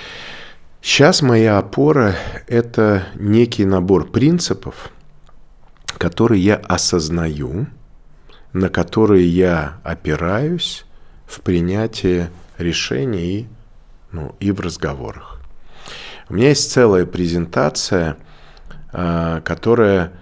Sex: male